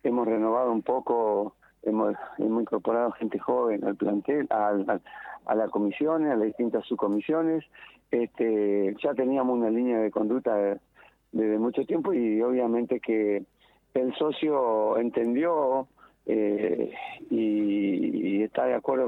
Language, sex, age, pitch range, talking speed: Spanish, male, 50-69, 110-135 Hz, 125 wpm